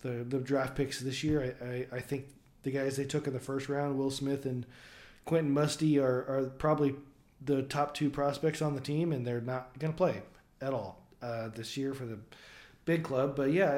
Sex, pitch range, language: male, 125-165 Hz, English